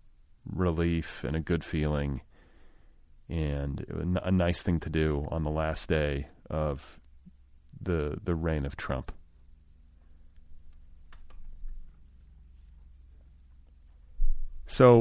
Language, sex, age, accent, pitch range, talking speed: English, male, 40-59, American, 75-100 Hz, 90 wpm